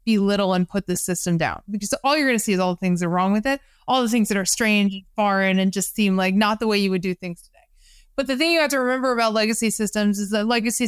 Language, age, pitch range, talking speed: English, 20-39, 205-255 Hz, 290 wpm